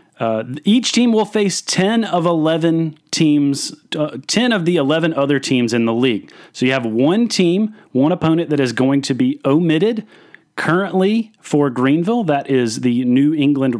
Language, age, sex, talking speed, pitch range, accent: English, 30-49, male, 175 wpm, 125-160 Hz, American